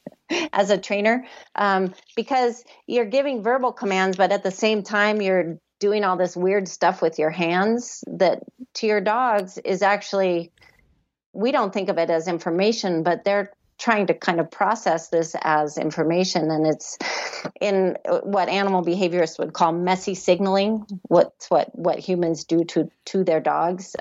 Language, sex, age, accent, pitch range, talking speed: English, female, 40-59, American, 170-200 Hz, 160 wpm